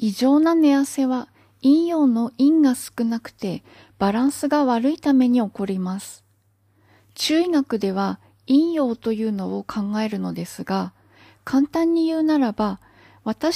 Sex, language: female, Japanese